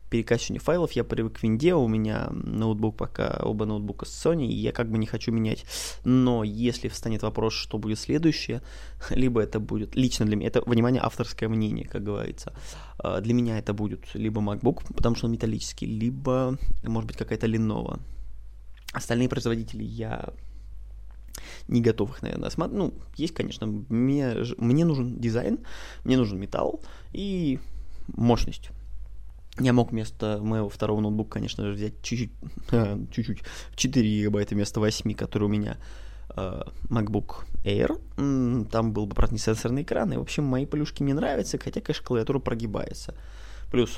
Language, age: Russian, 20-39